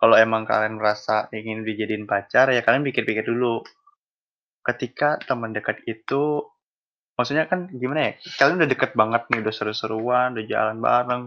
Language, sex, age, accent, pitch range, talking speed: Indonesian, male, 20-39, native, 110-135 Hz, 155 wpm